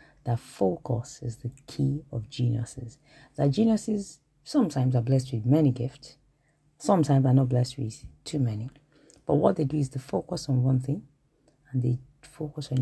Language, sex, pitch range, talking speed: English, female, 125-150 Hz, 170 wpm